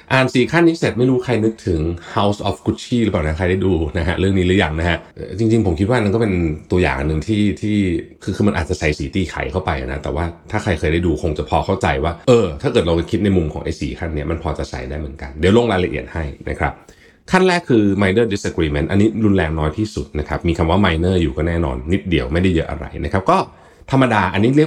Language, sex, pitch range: Thai, male, 80-110 Hz